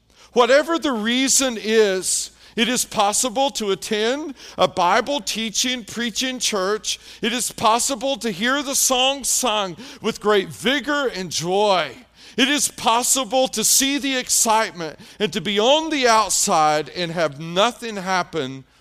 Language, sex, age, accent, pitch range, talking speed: English, male, 40-59, American, 180-255 Hz, 135 wpm